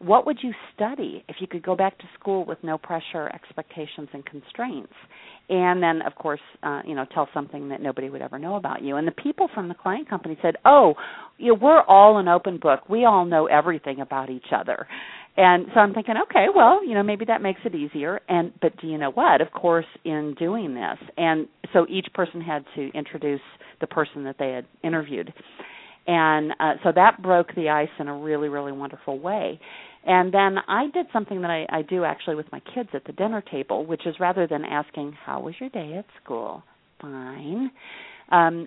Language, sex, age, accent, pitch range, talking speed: English, female, 40-59, American, 150-200 Hz, 210 wpm